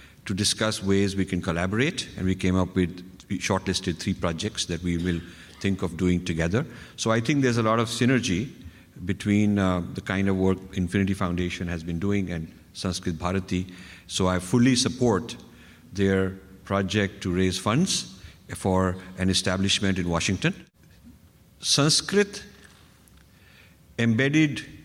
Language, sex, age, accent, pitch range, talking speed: English, male, 50-69, Indian, 90-120 Hz, 140 wpm